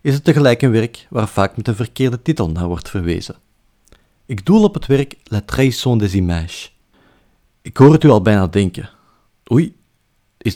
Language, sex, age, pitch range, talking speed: Dutch, male, 50-69, 100-135 Hz, 180 wpm